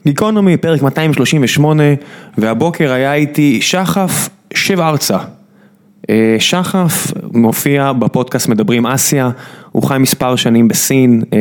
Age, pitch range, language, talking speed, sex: 20-39, 120-165 Hz, Hebrew, 100 wpm, male